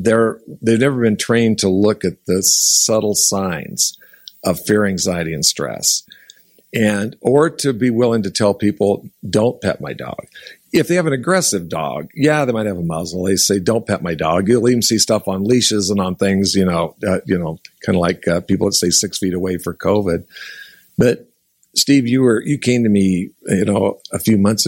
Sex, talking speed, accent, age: male, 205 wpm, American, 50-69